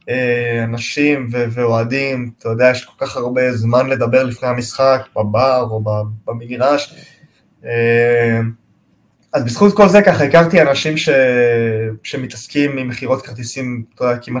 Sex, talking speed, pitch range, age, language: male, 115 wpm, 115-140 Hz, 20-39, Hebrew